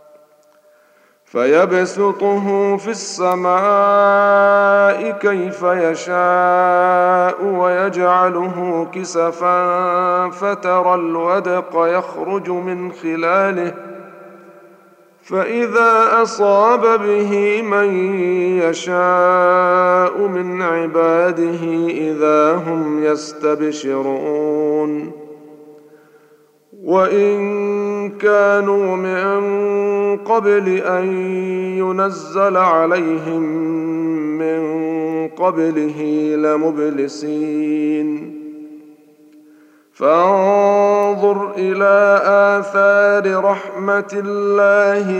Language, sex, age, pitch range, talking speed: Arabic, male, 40-59, 160-200 Hz, 50 wpm